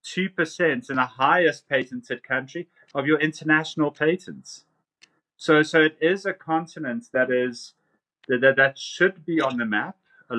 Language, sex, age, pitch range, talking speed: English, male, 30-49, 115-145 Hz, 155 wpm